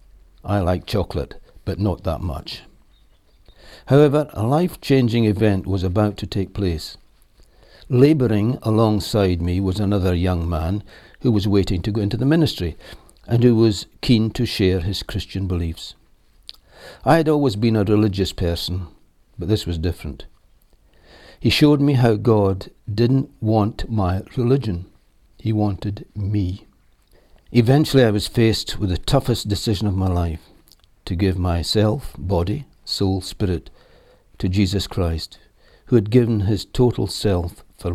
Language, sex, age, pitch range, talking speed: English, male, 60-79, 90-110 Hz, 140 wpm